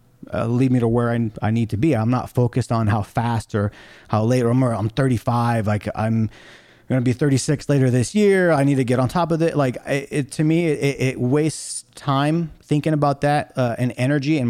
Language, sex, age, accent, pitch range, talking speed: English, male, 30-49, American, 115-140 Hz, 235 wpm